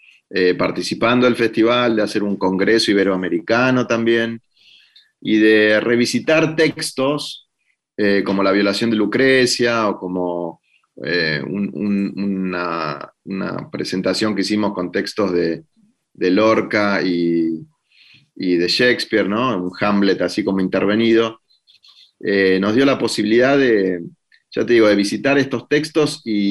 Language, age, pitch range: Spanish, 30-49, 95-115 Hz